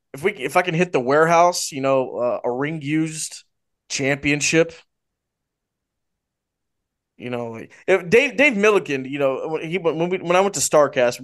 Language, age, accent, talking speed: English, 20-39, American, 165 wpm